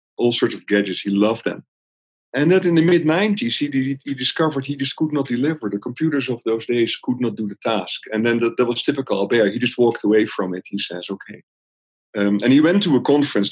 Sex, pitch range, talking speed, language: male, 100-120 Hz, 230 wpm, English